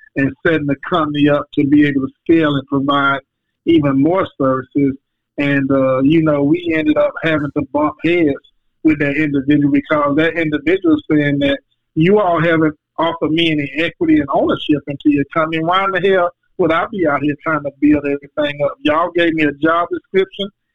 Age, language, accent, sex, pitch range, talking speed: 50-69, English, American, male, 145-170 Hz, 195 wpm